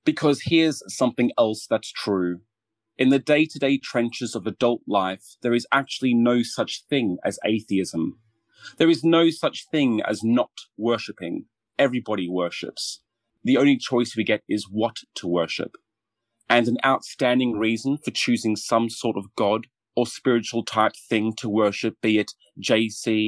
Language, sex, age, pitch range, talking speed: English, male, 30-49, 105-120 Hz, 150 wpm